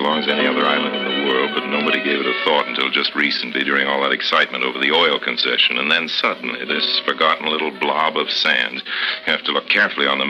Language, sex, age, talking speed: English, male, 60-79, 235 wpm